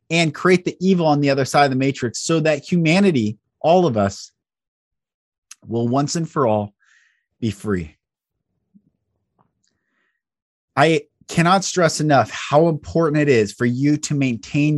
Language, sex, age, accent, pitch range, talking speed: English, male, 30-49, American, 125-170 Hz, 145 wpm